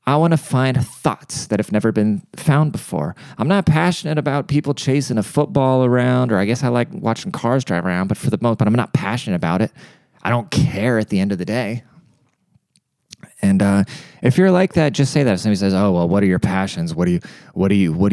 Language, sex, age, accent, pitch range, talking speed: English, male, 30-49, American, 100-135 Hz, 240 wpm